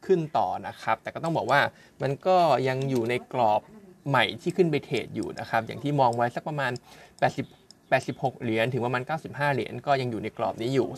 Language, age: Thai, 20-39